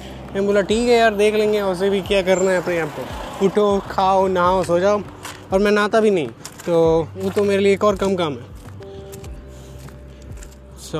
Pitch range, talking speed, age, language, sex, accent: 140-195 Hz, 195 wpm, 20-39, Hindi, male, native